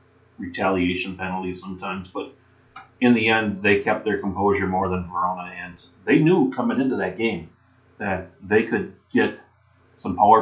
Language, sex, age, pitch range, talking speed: English, male, 40-59, 95-125 Hz, 155 wpm